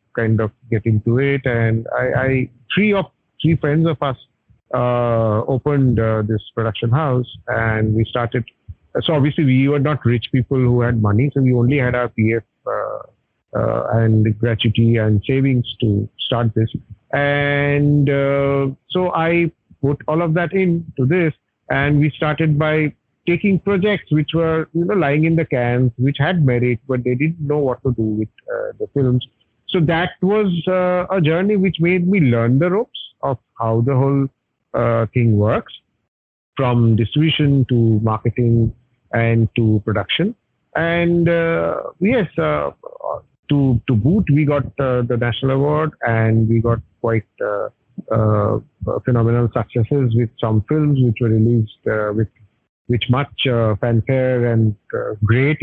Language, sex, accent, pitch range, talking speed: English, male, Indian, 115-145 Hz, 160 wpm